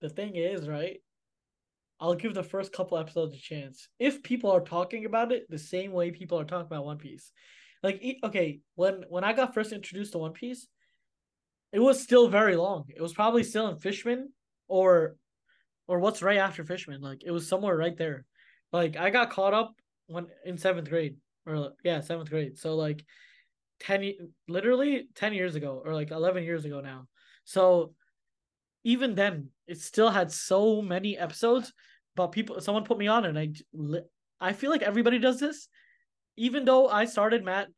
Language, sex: English, male